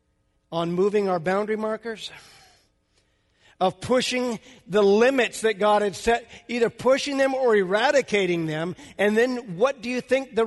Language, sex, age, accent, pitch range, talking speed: English, male, 50-69, American, 200-250 Hz, 150 wpm